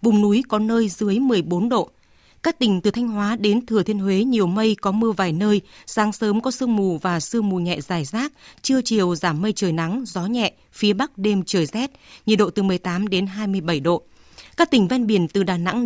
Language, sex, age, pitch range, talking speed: Vietnamese, female, 20-39, 190-235 Hz, 225 wpm